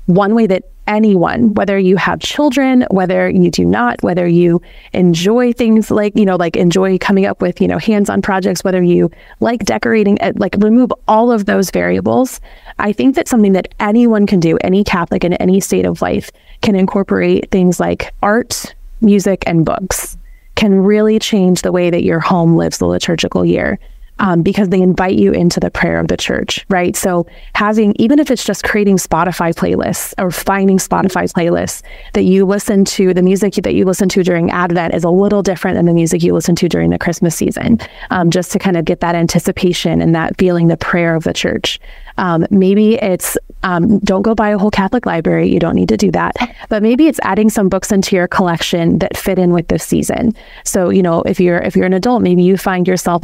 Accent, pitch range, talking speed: American, 175-205 Hz, 210 wpm